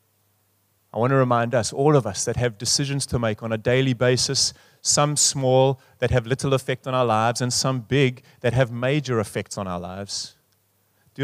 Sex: male